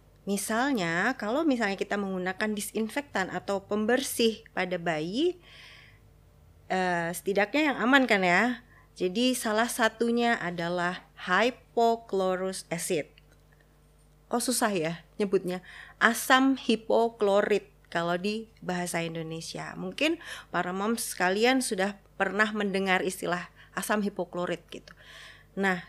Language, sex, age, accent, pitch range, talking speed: Indonesian, female, 30-49, native, 180-230 Hz, 100 wpm